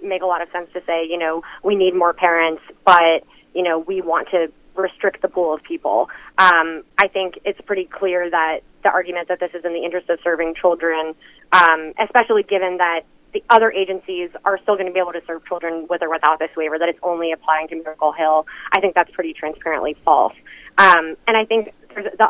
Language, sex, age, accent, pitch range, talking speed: English, female, 20-39, American, 165-190 Hz, 220 wpm